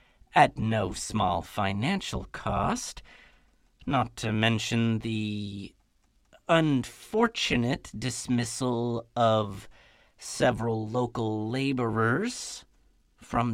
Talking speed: 70 wpm